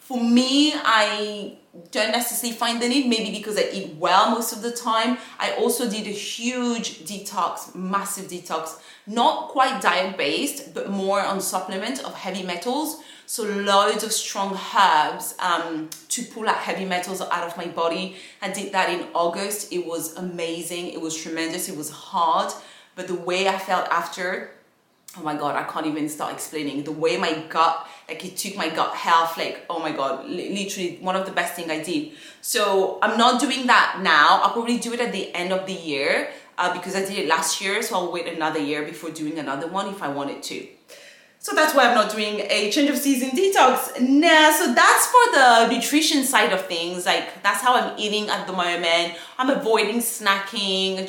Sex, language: female, English